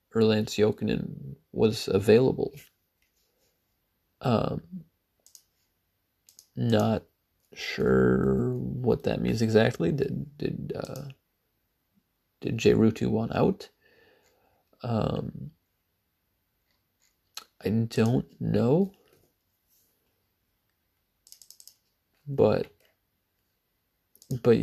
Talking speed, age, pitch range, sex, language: 60 wpm, 40-59, 90-140 Hz, male, English